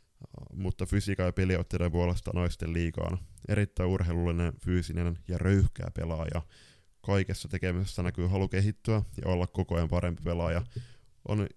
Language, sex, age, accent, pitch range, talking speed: Finnish, male, 20-39, native, 90-100 Hz, 130 wpm